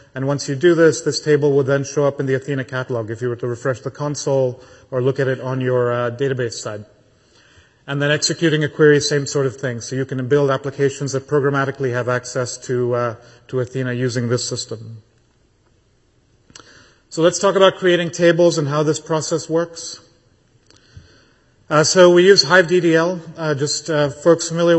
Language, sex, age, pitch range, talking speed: English, male, 40-59, 130-155 Hz, 190 wpm